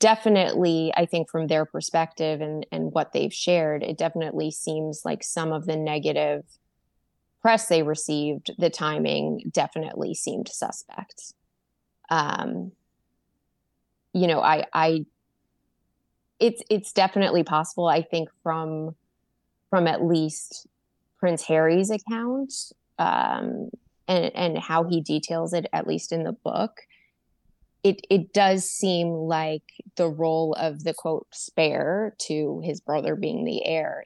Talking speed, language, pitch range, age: 130 wpm, English, 155-185 Hz, 20-39